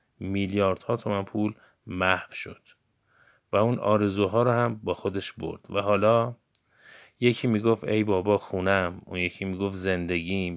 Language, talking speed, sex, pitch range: Persian, 140 wpm, male, 100-115 Hz